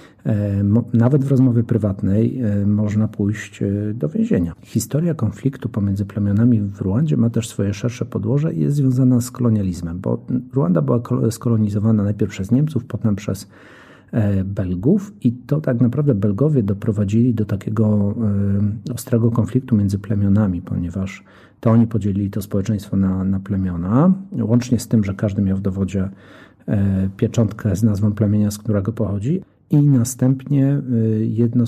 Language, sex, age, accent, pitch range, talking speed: Polish, male, 40-59, native, 100-120 Hz, 140 wpm